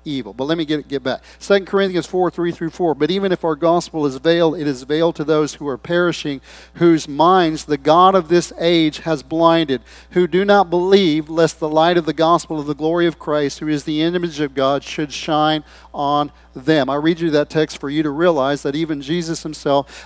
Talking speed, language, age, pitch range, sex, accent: 220 wpm, English, 40-59, 150-180 Hz, male, American